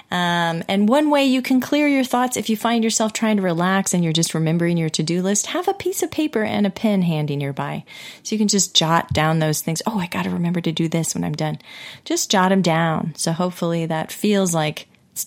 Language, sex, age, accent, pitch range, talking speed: English, female, 30-49, American, 170-235 Hz, 245 wpm